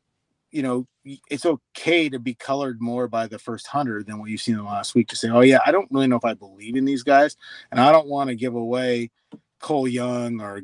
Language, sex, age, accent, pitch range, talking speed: English, male, 30-49, American, 115-135 Hz, 250 wpm